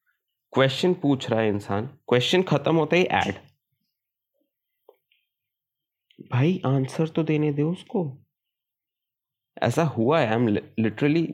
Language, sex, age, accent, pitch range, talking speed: Hindi, male, 30-49, native, 110-160 Hz, 110 wpm